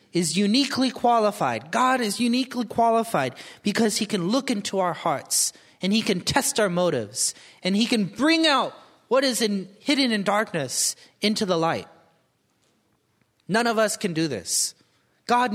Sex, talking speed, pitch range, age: male, 160 wpm, 175-240 Hz, 30-49